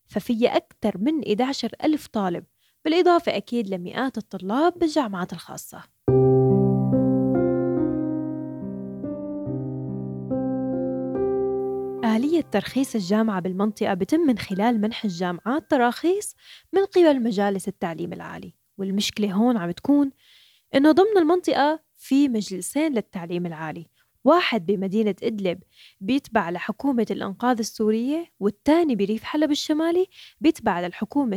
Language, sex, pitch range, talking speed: Arabic, female, 190-260 Hz, 100 wpm